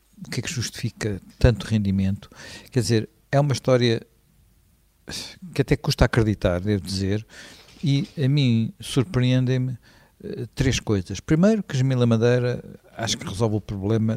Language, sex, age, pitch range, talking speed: Portuguese, male, 60-79, 105-135 Hz, 140 wpm